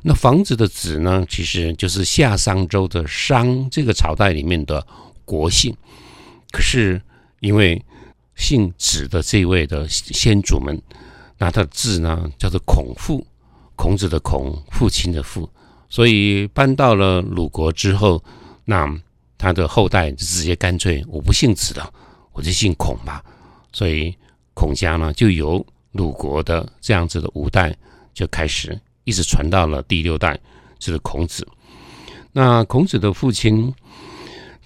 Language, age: Chinese, 60-79